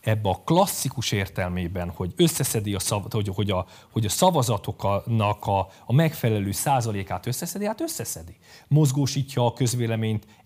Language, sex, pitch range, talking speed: Hungarian, male, 105-155 Hz, 130 wpm